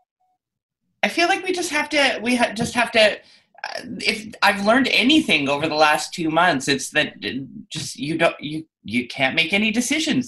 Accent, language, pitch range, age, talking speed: American, English, 140-200 Hz, 30-49, 185 wpm